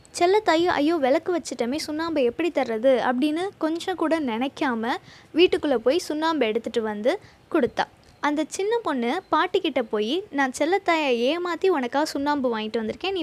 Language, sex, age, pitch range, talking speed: Tamil, female, 20-39, 245-315 Hz, 130 wpm